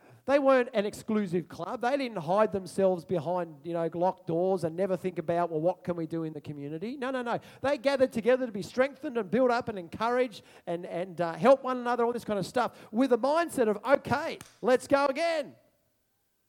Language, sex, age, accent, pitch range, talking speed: English, male, 40-59, Australian, 240-305 Hz, 215 wpm